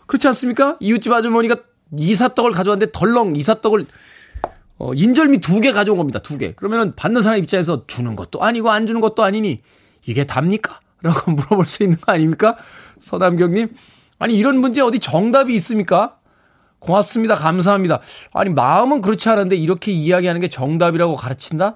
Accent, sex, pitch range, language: native, male, 120-205 Hz, Korean